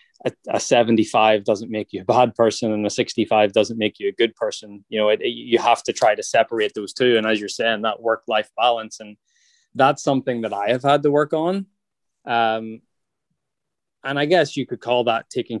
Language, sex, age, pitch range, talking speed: English, male, 20-39, 110-130 Hz, 210 wpm